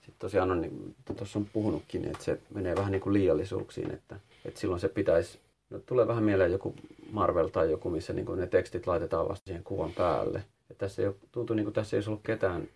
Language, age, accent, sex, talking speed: English, 30-49, Finnish, male, 210 wpm